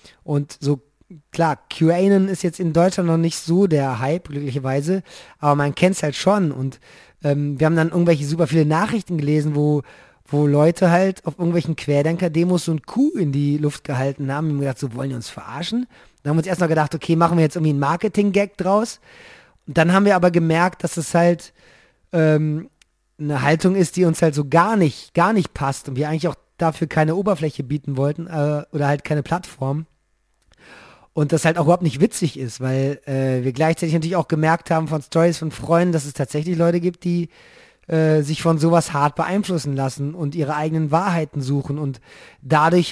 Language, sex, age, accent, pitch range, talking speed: German, male, 30-49, German, 145-175 Hz, 205 wpm